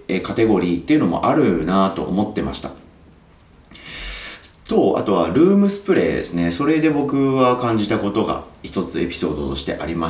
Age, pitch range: 40-59, 80-110 Hz